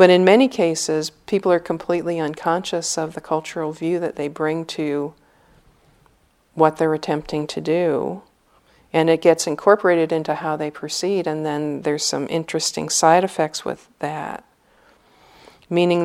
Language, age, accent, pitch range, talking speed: English, 50-69, American, 155-170 Hz, 145 wpm